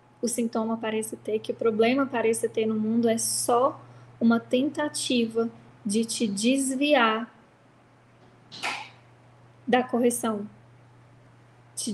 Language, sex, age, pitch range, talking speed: Portuguese, female, 10-29, 215-255 Hz, 105 wpm